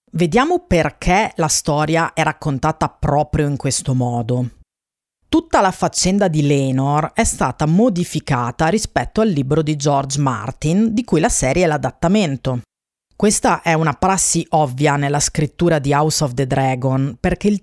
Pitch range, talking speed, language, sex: 145-205 Hz, 150 wpm, Italian, female